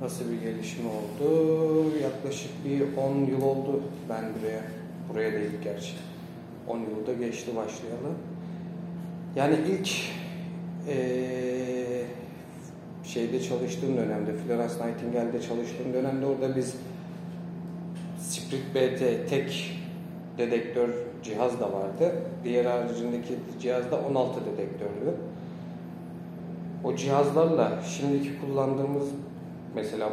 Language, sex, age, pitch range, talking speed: Turkish, male, 40-59, 115-155 Hz, 95 wpm